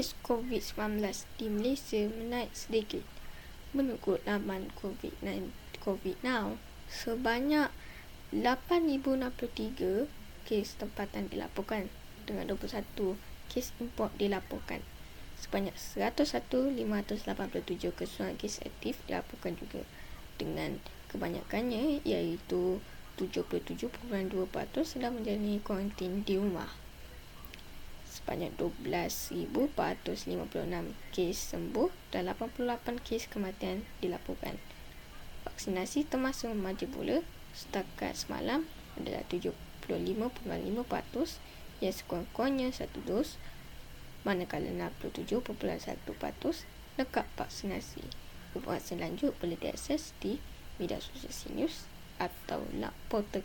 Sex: female